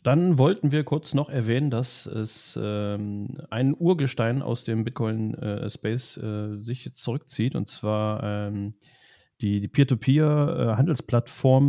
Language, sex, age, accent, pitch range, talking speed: German, male, 30-49, German, 100-125 Hz, 130 wpm